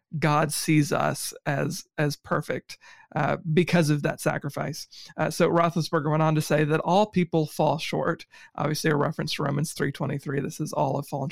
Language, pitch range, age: English, 150-165 Hz, 40-59